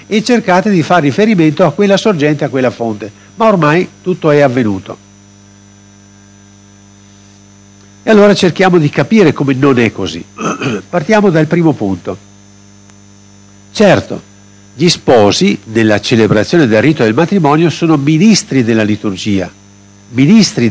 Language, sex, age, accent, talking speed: Italian, male, 50-69, native, 125 wpm